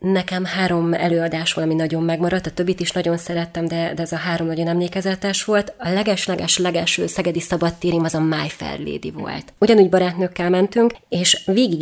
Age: 20-39